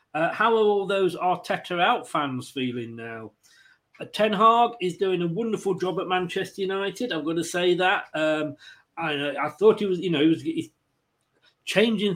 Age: 40-59